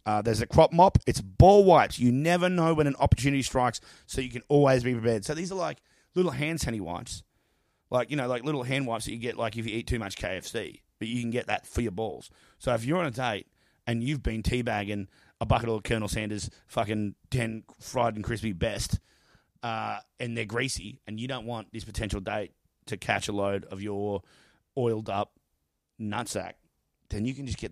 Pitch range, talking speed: 105-135 Hz, 210 wpm